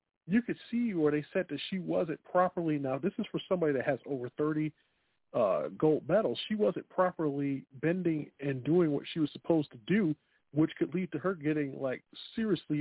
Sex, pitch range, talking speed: male, 140-180 Hz, 200 wpm